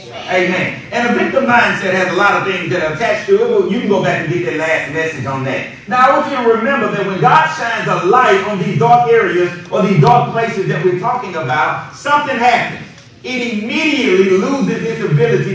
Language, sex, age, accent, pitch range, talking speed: English, male, 40-59, American, 175-235 Hz, 210 wpm